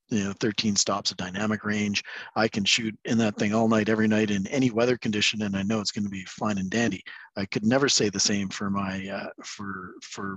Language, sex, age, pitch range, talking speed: English, male, 40-59, 100-125 Hz, 245 wpm